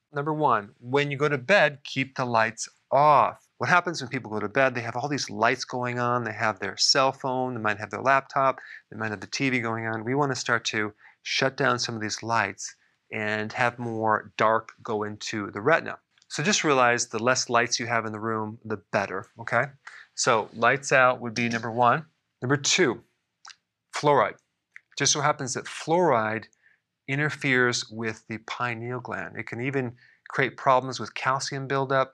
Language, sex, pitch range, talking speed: English, male, 110-135 Hz, 190 wpm